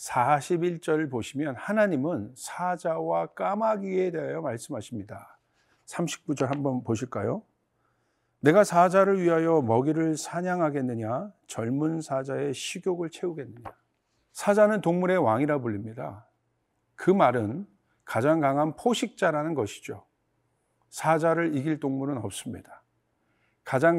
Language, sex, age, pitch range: Korean, male, 50-69, 135-180 Hz